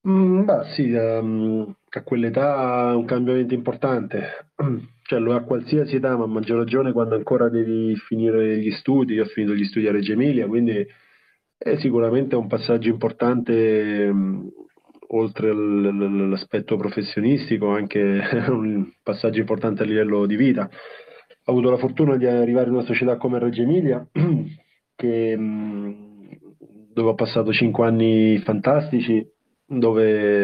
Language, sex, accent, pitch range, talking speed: Italian, male, native, 110-125 Hz, 135 wpm